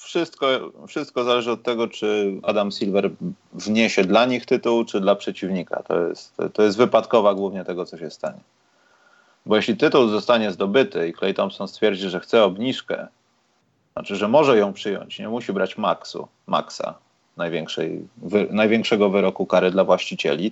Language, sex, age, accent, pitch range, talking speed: Polish, male, 30-49, native, 100-120 Hz, 160 wpm